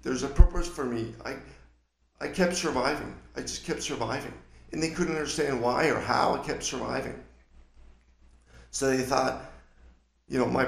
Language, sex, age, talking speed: English, male, 50-69, 165 wpm